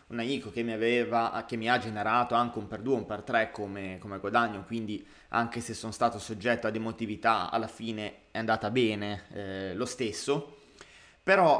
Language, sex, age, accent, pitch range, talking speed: Italian, male, 20-39, native, 110-145 Hz, 175 wpm